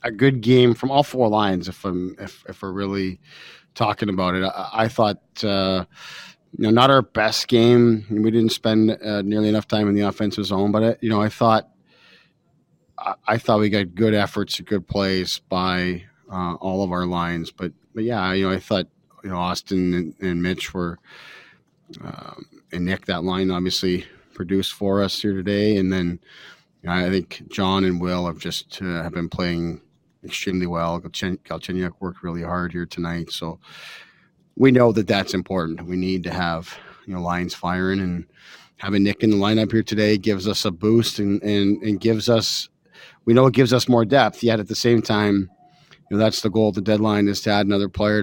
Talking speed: 205 wpm